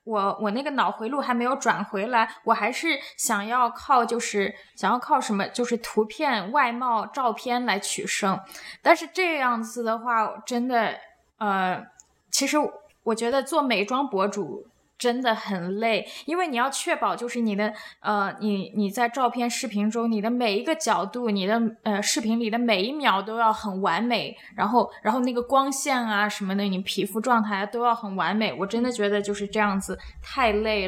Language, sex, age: Chinese, female, 20-39